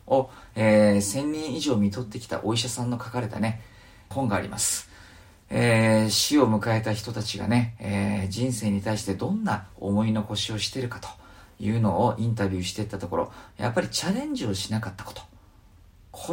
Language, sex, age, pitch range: Japanese, male, 40-59, 100-130 Hz